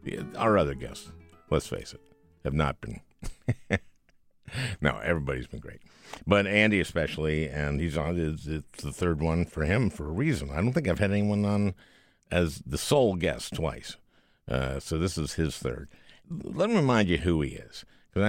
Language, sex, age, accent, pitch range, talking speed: English, male, 60-79, American, 80-105 Hz, 175 wpm